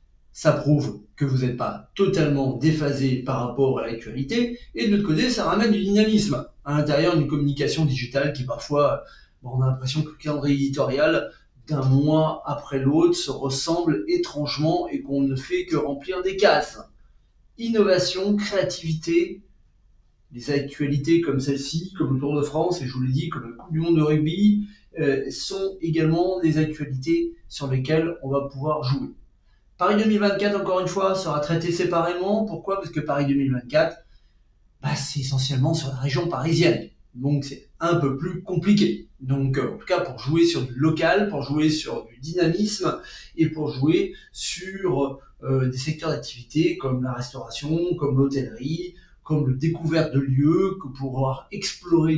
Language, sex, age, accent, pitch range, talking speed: French, male, 40-59, French, 135-180 Hz, 165 wpm